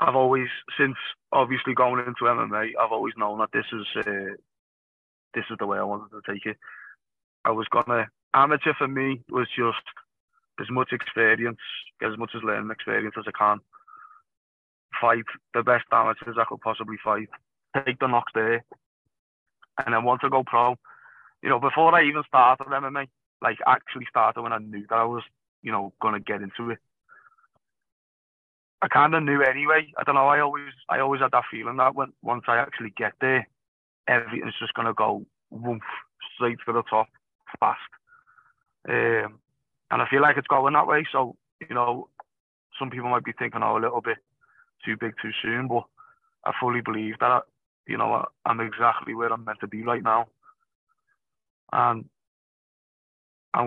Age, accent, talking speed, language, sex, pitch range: 20-39, British, 180 wpm, English, male, 115-150 Hz